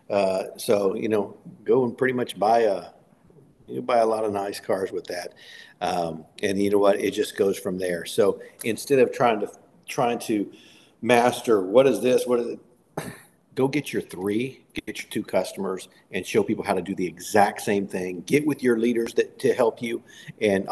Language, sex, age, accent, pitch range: Japanese, male, 50-69, American, 105-145 Hz